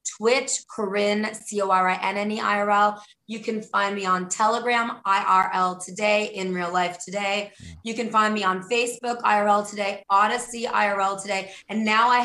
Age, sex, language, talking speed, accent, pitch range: 20-39, female, English, 140 wpm, American, 195-230 Hz